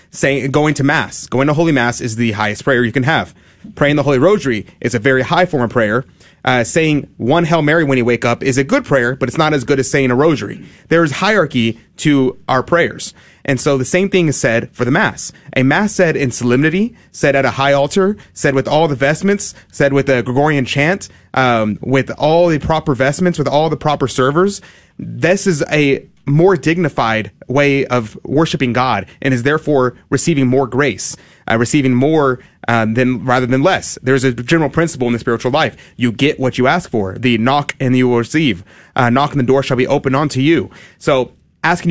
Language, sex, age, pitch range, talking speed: English, male, 30-49, 125-160 Hz, 215 wpm